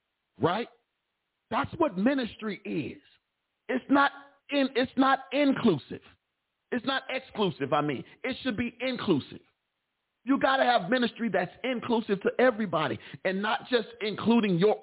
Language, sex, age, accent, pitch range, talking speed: English, male, 40-59, American, 165-235 Hz, 140 wpm